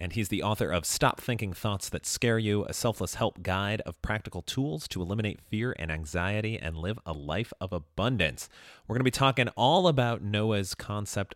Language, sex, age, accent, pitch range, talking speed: English, male, 30-49, American, 90-125 Hz, 200 wpm